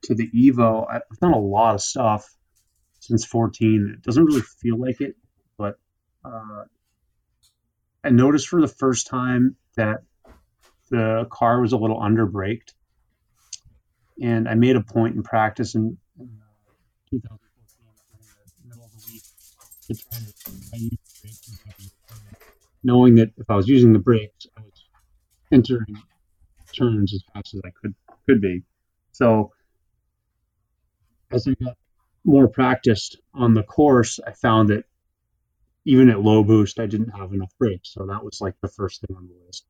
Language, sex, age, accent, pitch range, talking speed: English, male, 30-49, American, 95-115 Hz, 150 wpm